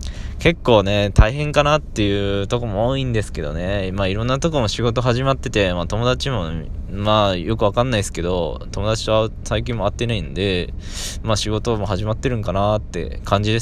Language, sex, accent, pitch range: Japanese, male, native, 90-120 Hz